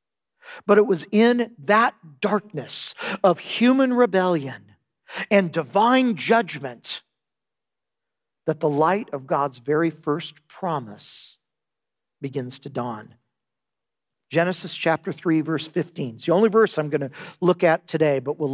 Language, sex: English, male